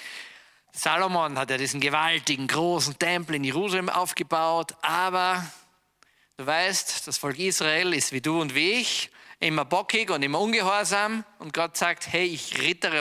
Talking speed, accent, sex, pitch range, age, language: 150 wpm, German, male, 130-175 Hz, 50-69, German